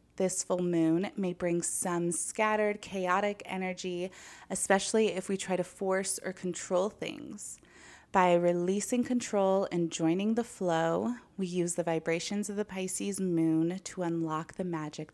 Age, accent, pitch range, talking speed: 20-39, American, 170-195 Hz, 145 wpm